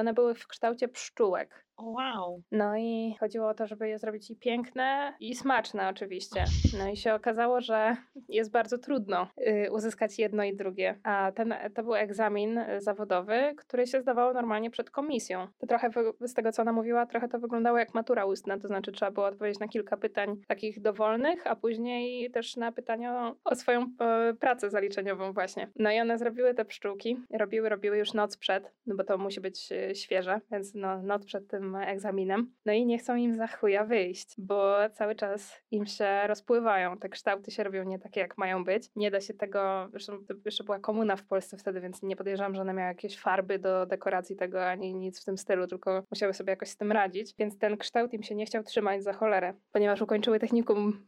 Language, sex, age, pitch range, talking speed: Polish, female, 20-39, 200-235 Hz, 200 wpm